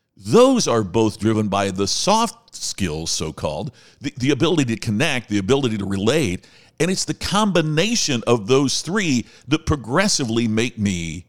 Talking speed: 160 wpm